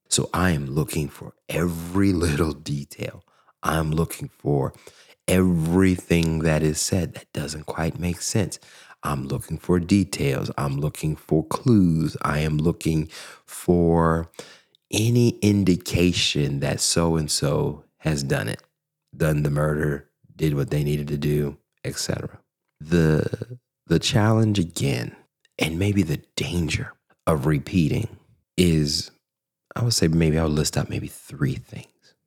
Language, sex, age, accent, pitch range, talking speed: English, male, 30-49, American, 75-115 Hz, 130 wpm